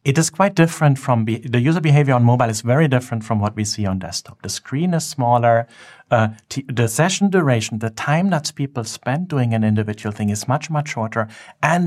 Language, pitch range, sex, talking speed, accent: English, 110-145 Hz, male, 205 wpm, German